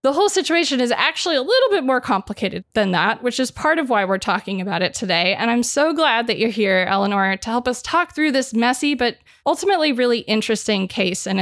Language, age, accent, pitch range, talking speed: English, 20-39, American, 205-290 Hz, 225 wpm